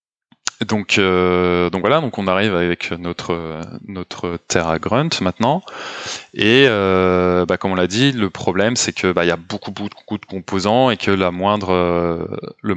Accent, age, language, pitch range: French, 20-39, French, 90-105 Hz